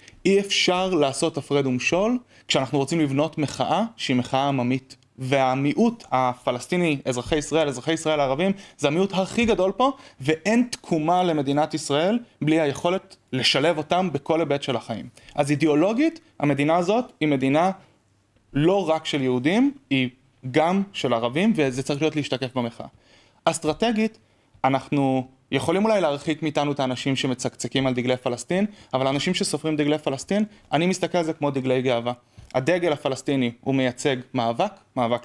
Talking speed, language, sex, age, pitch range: 145 wpm, Hebrew, male, 30-49, 130-170 Hz